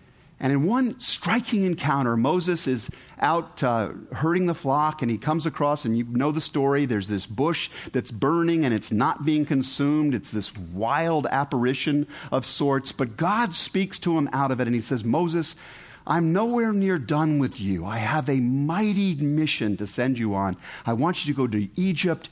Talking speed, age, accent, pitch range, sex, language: 190 wpm, 50-69, American, 110-155 Hz, male, English